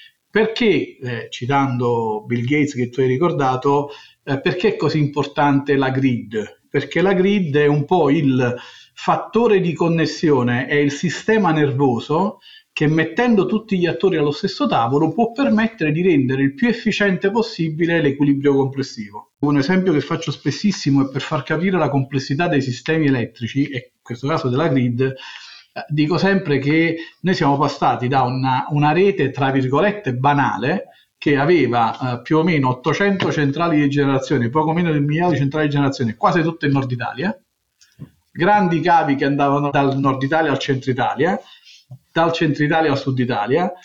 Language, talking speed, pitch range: Italian, 165 wpm, 135-170 Hz